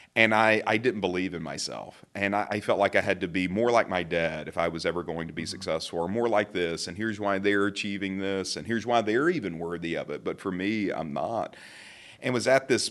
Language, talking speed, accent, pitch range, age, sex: English, 255 wpm, American, 90-110 Hz, 40-59, male